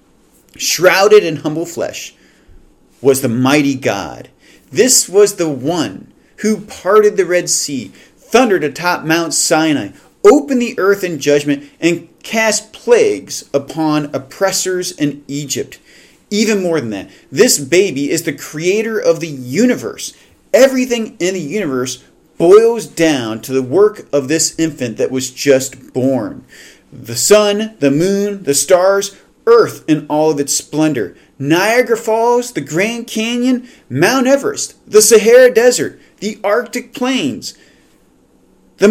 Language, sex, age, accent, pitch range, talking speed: English, male, 40-59, American, 155-240 Hz, 135 wpm